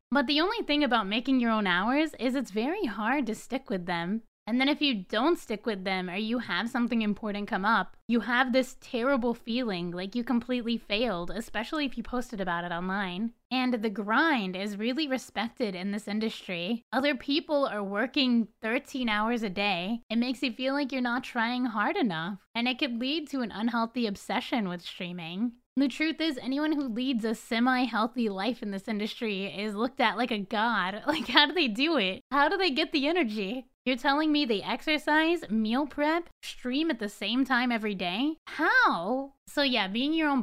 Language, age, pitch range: English, 10-29, 210-270 Hz